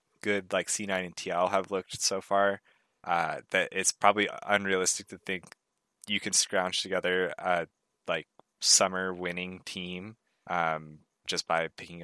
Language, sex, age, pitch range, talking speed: English, male, 20-39, 85-100 Hz, 145 wpm